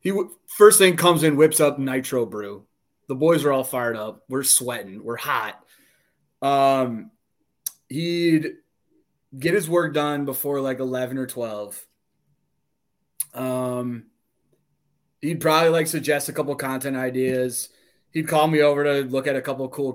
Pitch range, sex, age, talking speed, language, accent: 125-155 Hz, male, 20-39, 150 wpm, English, American